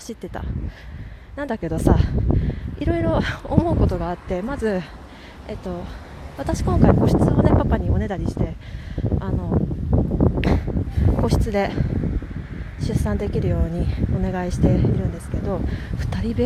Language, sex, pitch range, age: Japanese, female, 175-285 Hz, 20-39